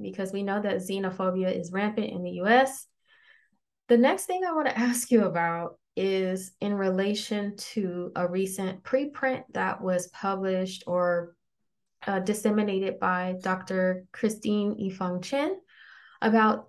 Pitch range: 185-230 Hz